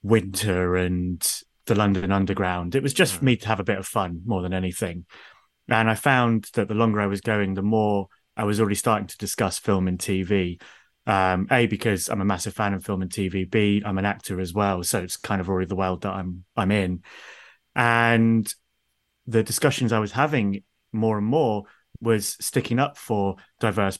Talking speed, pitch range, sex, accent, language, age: 205 wpm, 95-115 Hz, male, British, English, 30-49